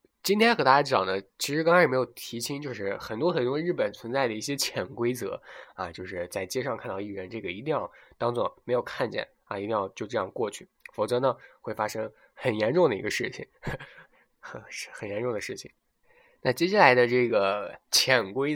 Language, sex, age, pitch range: Chinese, male, 20-39, 115-170 Hz